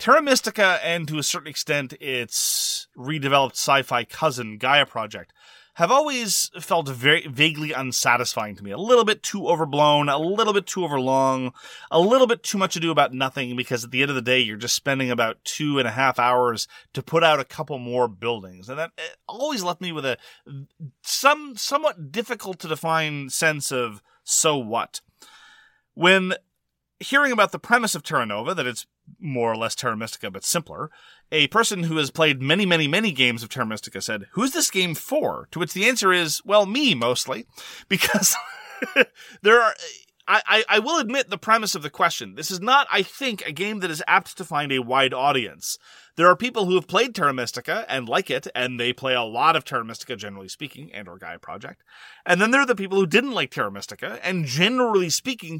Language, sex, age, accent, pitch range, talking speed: English, male, 30-49, American, 130-190 Hz, 200 wpm